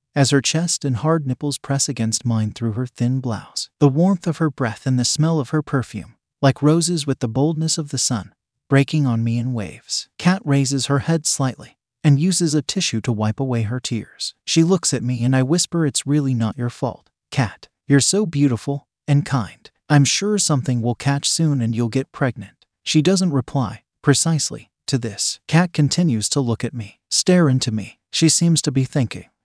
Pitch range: 120-155 Hz